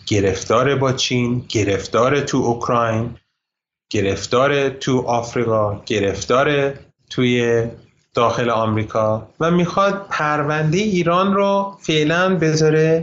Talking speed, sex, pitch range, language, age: 90 wpm, male, 115-155 Hz, Persian, 30-49